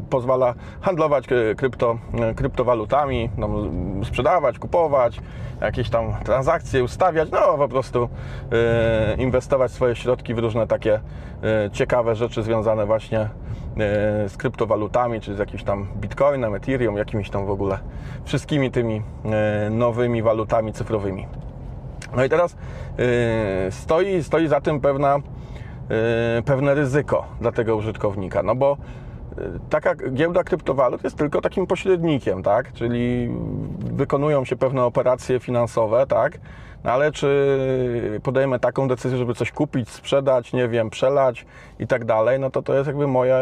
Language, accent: Polish, native